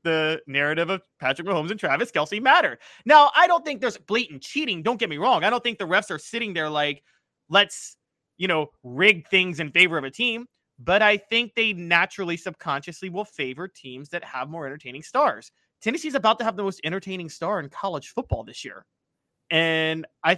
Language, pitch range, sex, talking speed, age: English, 140-195 Hz, male, 205 wpm, 30-49